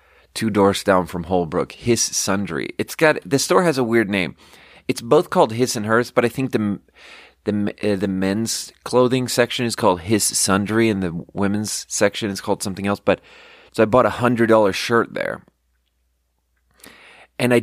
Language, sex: English, male